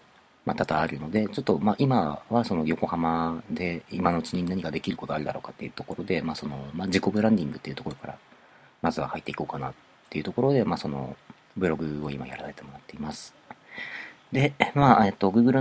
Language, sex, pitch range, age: Japanese, male, 75-100 Hz, 40-59